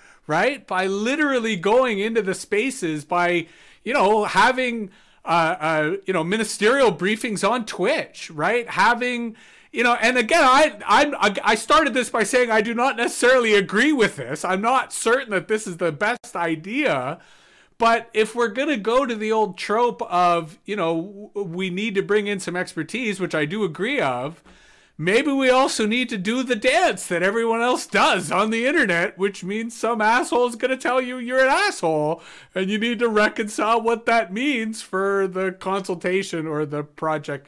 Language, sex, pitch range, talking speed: English, male, 180-235 Hz, 185 wpm